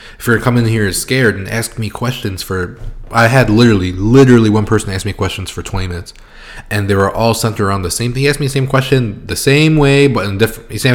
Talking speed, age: 235 wpm, 20-39